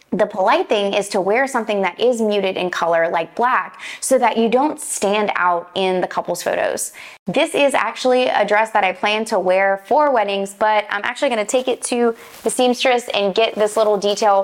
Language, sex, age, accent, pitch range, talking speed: English, female, 20-39, American, 190-230 Hz, 210 wpm